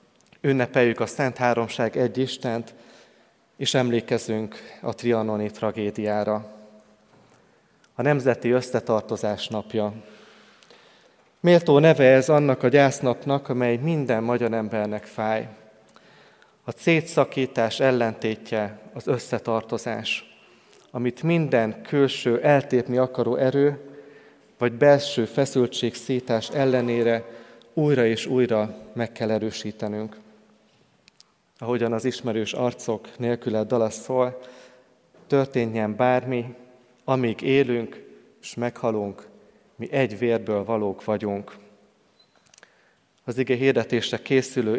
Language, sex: Hungarian, male